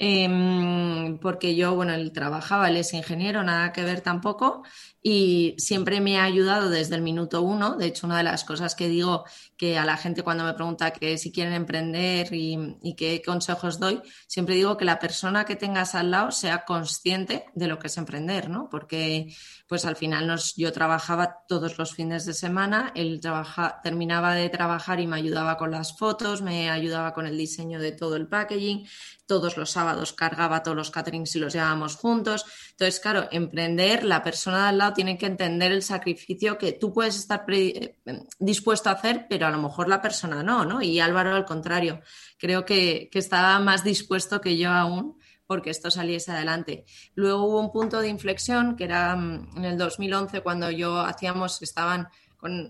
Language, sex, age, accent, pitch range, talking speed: Spanish, female, 20-39, Spanish, 165-195 Hz, 190 wpm